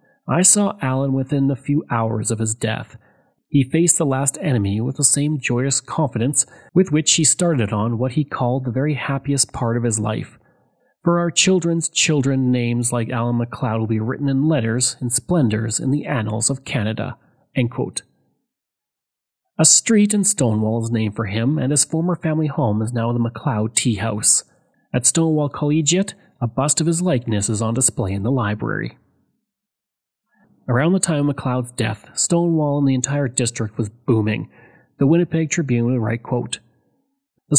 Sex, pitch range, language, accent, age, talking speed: male, 120-155 Hz, English, Canadian, 30-49, 175 wpm